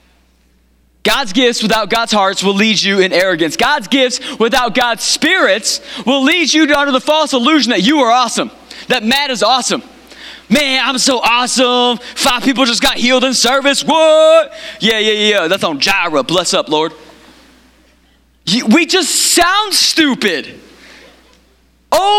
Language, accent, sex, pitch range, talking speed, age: English, American, male, 195-295 Hz, 150 wpm, 20-39